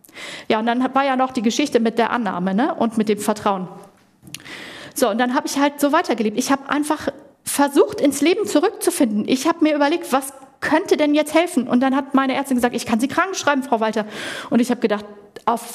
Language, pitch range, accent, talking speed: German, 215-285 Hz, German, 220 wpm